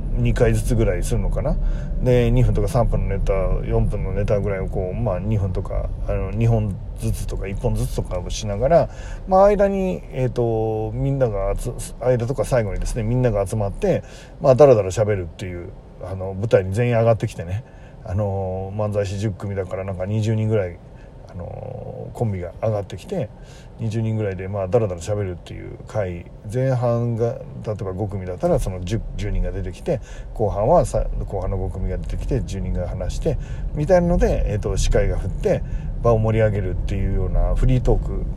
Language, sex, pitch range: Japanese, male, 95-125 Hz